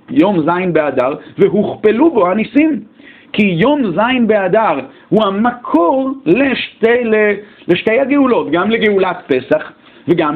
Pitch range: 190-270 Hz